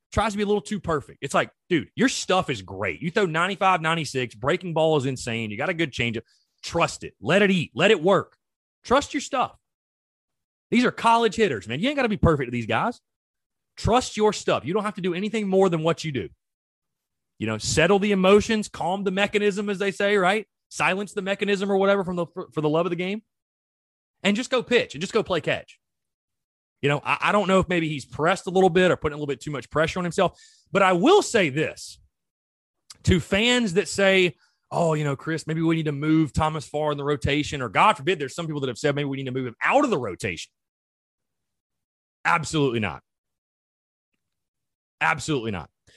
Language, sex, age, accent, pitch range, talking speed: English, male, 30-49, American, 140-205 Hz, 220 wpm